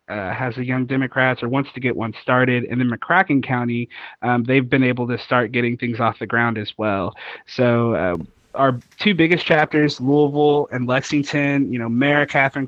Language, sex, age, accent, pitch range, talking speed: English, male, 20-39, American, 120-140 Hz, 195 wpm